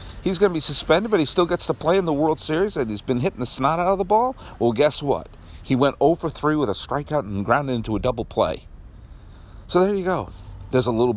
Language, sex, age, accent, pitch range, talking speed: English, male, 50-69, American, 105-150 Hz, 260 wpm